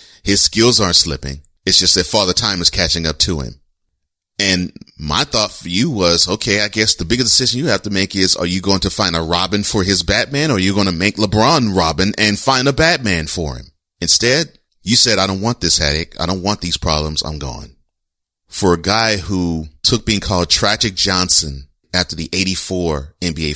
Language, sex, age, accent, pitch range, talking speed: English, male, 30-49, American, 80-100 Hz, 210 wpm